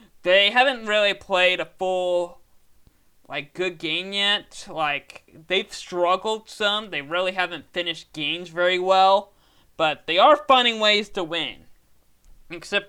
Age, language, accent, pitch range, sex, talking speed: 20-39, English, American, 155-200 Hz, male, 135 wpm